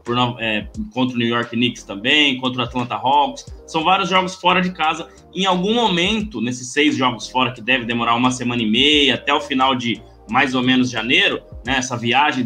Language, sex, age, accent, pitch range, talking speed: Portuguese, male, 20-39, Brazilian, 120-155 Hz, 205 wpm